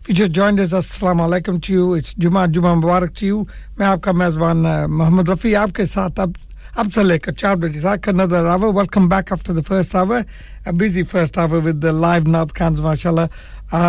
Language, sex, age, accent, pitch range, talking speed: English, male, 60-79, Indian, 170-195 Hz, 220 wpm